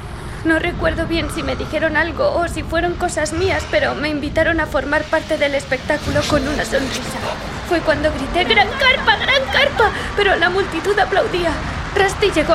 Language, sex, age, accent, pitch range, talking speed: Spanish, female, 20-39, Spanish, 320-420 Hz, 170 wpm